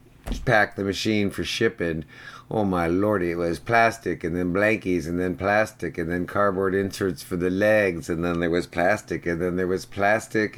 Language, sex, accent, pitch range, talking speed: English, male, American, 90-120 Hz, 195 wpm